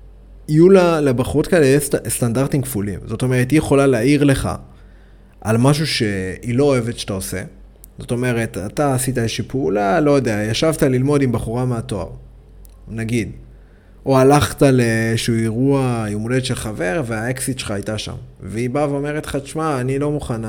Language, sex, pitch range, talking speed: Hebrew, male, 110-145 Hz, 155 wpm